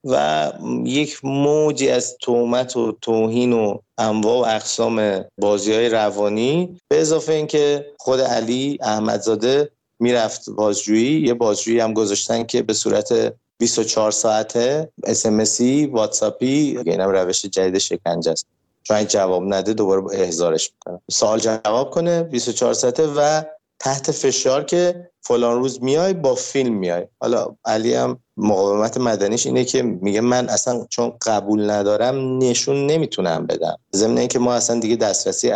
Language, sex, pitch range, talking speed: Persian, male, 100-130 Hz, 140 wpm